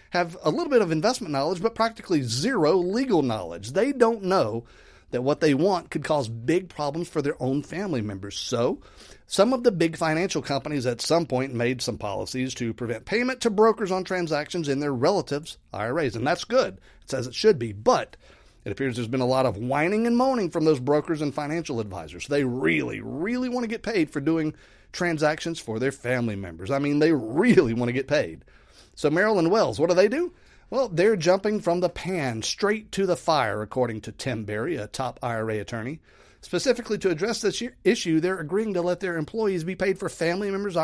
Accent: American